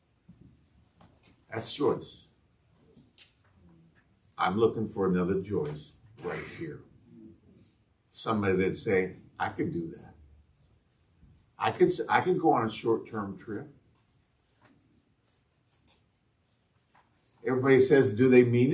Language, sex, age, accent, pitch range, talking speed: English, male, 60-79, American, 100-150 Hz, 95 wpm